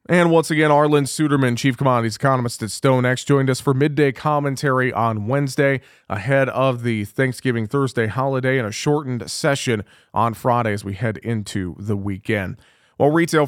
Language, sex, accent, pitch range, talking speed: English, male, American, 120-140 Hz, 165 wpm